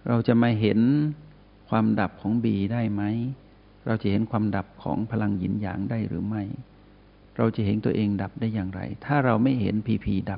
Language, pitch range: Thai, 100-120 Hz